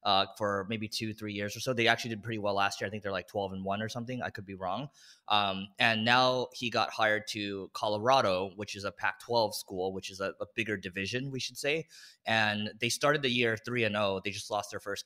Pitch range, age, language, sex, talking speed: 100-120 Hz, 20-39, English, male, 255 wpm